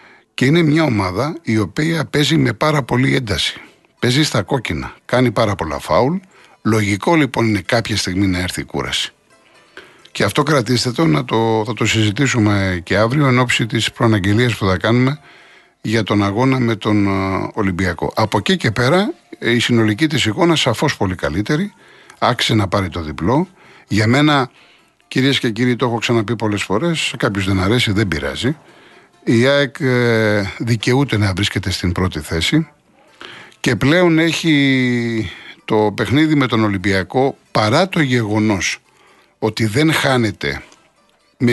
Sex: male